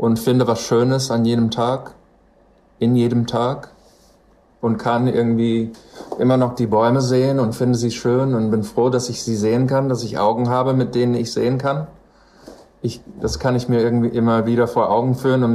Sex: male